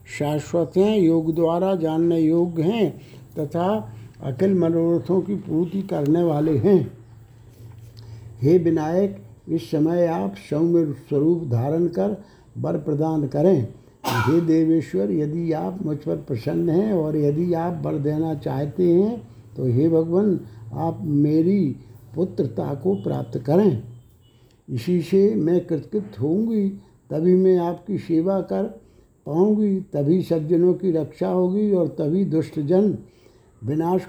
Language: Hindi